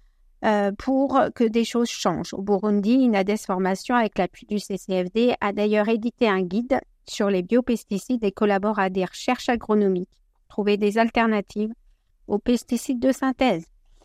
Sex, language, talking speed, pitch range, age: female, French, 155 wpm, 200-245 Hz, 60-79